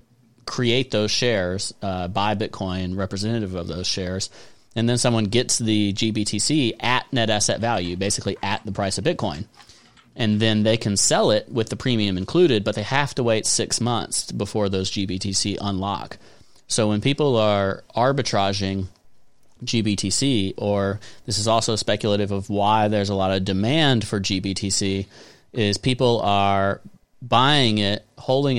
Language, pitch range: English, 100-115 Hz